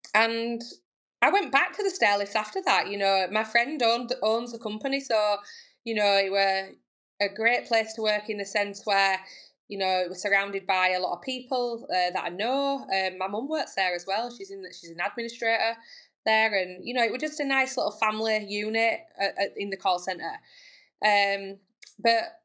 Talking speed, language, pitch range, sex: 205 wpm, English, 200-245 Hz, female